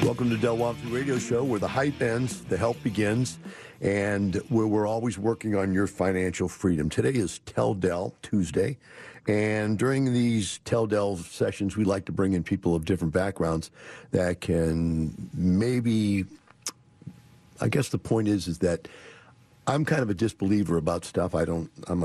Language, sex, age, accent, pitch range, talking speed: English, male, 50-69, American, 90-120 Hz, 170 wpm